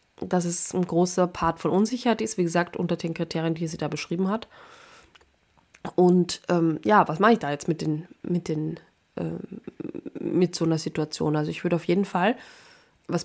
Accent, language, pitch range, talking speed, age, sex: German, German, 165-200 Hz, 190 wpm, 20-39, female